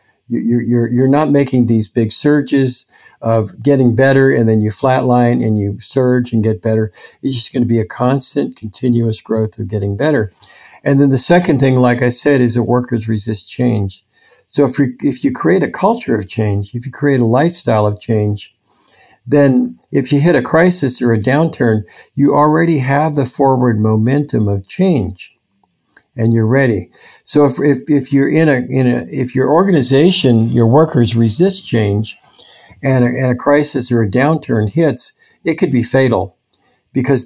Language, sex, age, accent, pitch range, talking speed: English, male, 60-79, American, 110-140 Hz, 180 wpm